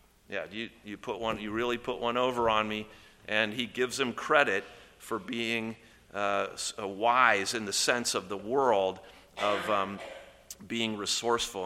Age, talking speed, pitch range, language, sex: 40-59, 160 wpm, 105-140 Hz, English, male